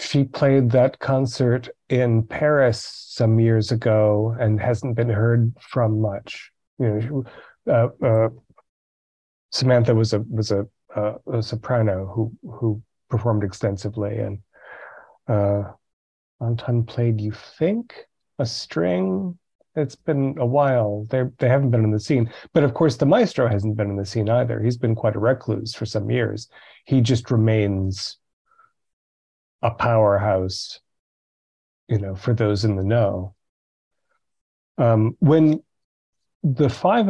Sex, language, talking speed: male, English, 135 wpm